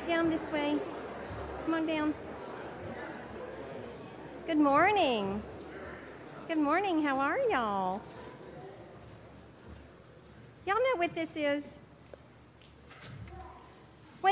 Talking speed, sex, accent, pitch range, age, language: 80 wpm, female, American, 260-330 Hz, 50-69, English